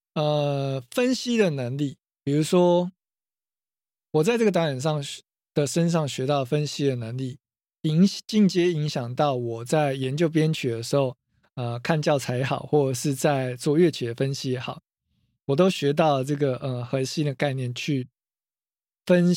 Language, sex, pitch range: Chinese, male, 130-160 Hz